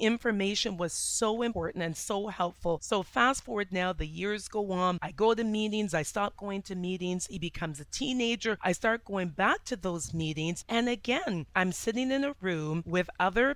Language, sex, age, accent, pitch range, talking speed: English, female, 30-49, American, 180-230 Hz, 195 wpm